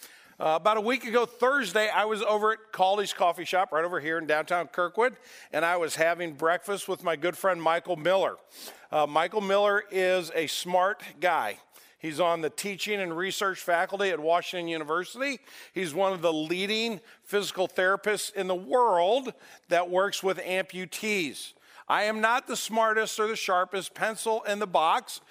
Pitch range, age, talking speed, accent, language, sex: 180-225 Hz, 50-69, 175 wpm, American, English, male